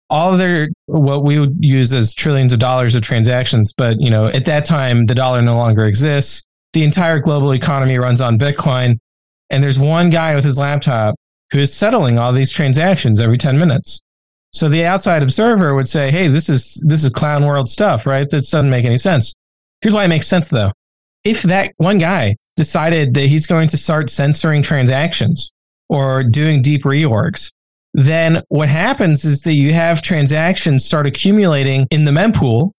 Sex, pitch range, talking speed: male, 130-165 Hz, 185 wpm